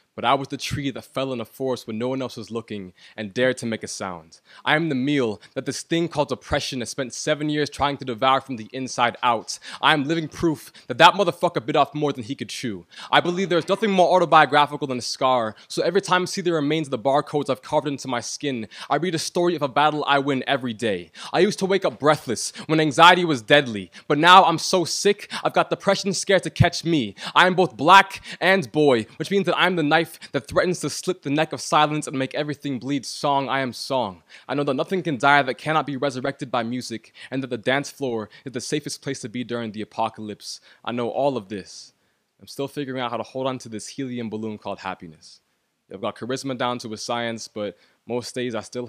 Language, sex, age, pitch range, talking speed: English, male, 20-39, 115-155 Hz, 245 wpm